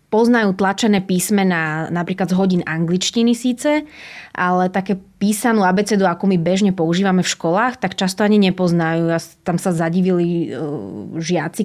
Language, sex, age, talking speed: Slovak, female, 20-39, 145 wpm